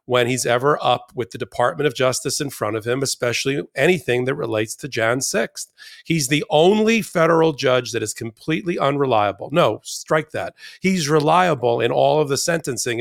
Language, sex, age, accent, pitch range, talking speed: English, male, 40-59, American, 125-150 Hz, 180 wpm